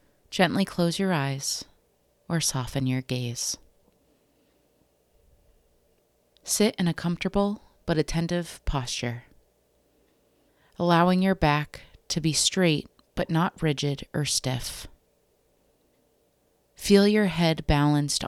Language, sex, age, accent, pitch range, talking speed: English, female, 30-49, American, 130-170 Hz, 100 wpm